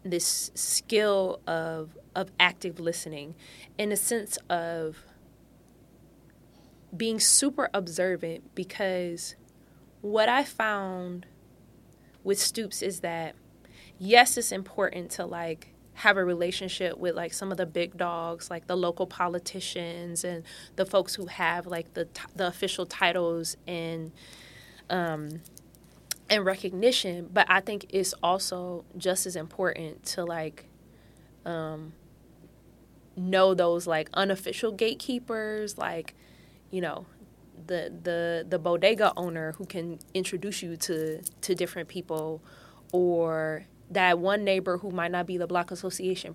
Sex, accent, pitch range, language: female, American, 165-190 Hz, English